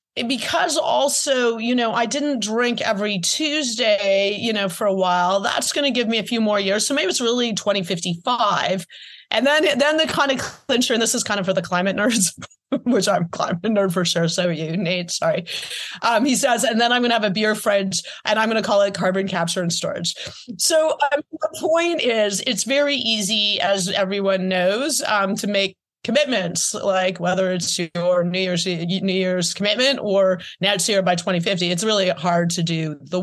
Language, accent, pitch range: English, American, 185-240 Hz